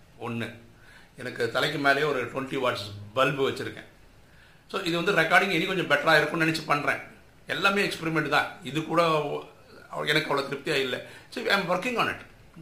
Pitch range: 125-155 Hz